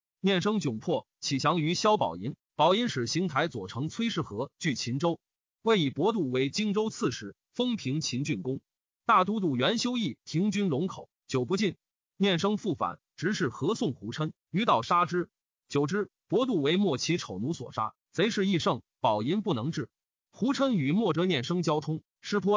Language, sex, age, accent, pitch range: Chinese, male, 30-49, native, 140-205 Hz